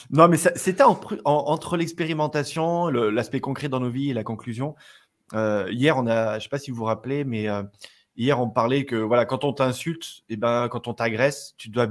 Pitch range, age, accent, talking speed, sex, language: 110-140 Hz, 20-39, French, 220 wpm, male, French